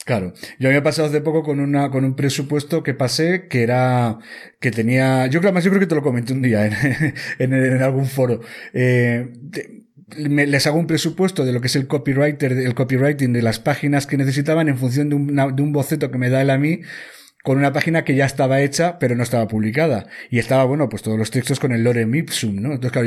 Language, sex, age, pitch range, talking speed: Spanish, male, 30-49, 125-150 Hz, 235 wpm